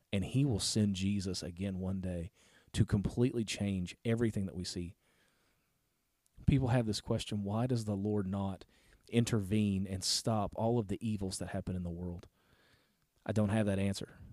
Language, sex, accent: English, male, American